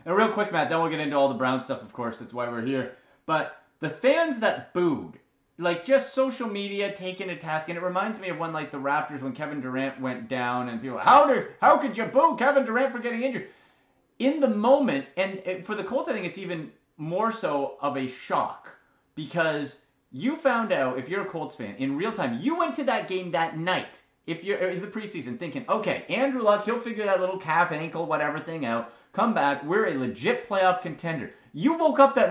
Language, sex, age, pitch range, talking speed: English, male, 30-49, 160-250 Hz, 225 wpm